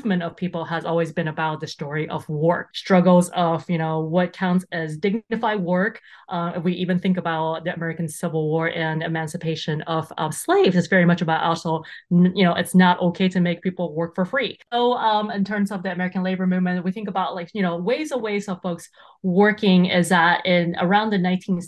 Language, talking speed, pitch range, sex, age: English, 210 wpm, 170-195 Hz, female, 20-39